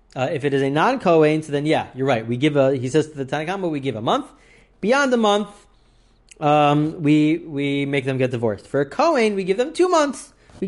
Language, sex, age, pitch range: English, male, 30-49, 130-175 Hz